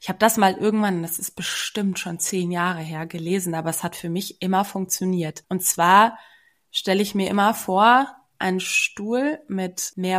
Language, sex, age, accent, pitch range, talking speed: German, female, 20-39, German, 175-200 Hz, 185 wpm